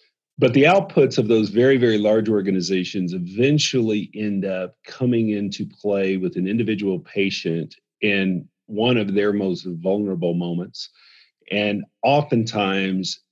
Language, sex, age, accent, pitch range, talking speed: English, male, 40-59, American, 90-110 Hz, 125 wpm